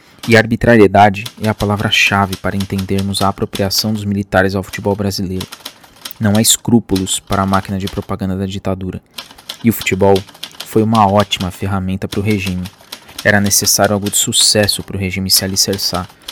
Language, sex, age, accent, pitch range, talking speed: Portuguese, male, 20-39, Brazilian, 95-110 Hz, 160 wpm